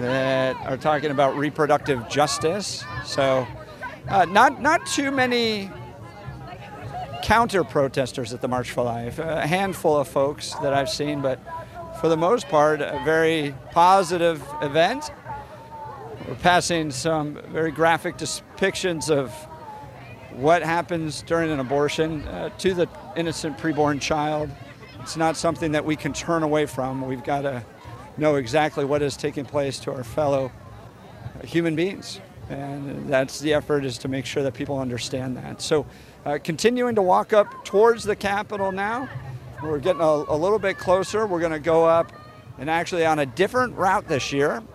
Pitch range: 135-165 Hz